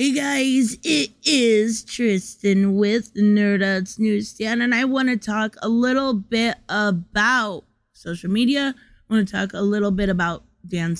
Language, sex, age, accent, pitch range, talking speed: English, female, 20-39, American, 190-240 Hz, 140 wpm